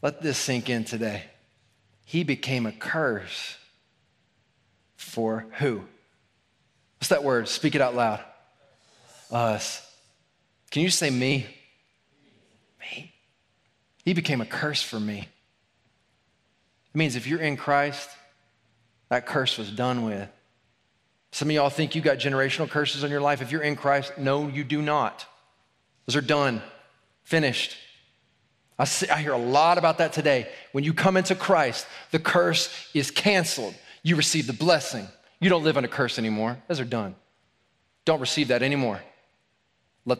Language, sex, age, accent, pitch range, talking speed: English, male, 30-49, American, 115-155 Hz, 150 wpm